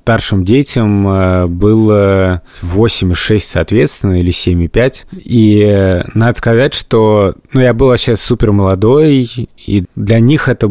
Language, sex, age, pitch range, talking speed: Russian, male, 30-49, 95-120 Hz, 120 wpm